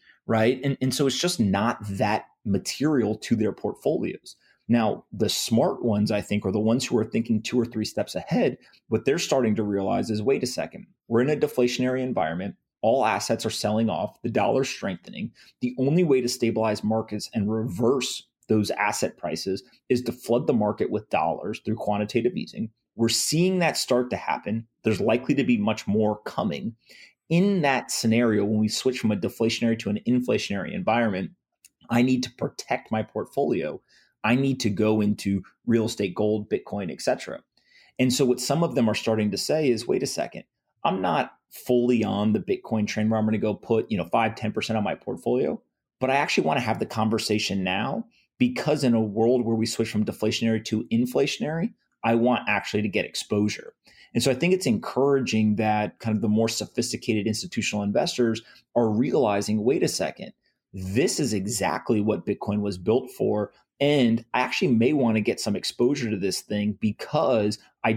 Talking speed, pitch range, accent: 190 wpm, 105-125 Hz, American